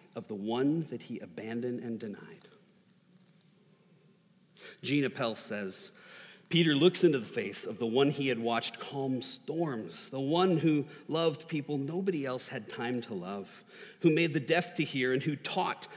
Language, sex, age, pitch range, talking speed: English, male, 40-59, 135-180 Hz, 165 wpm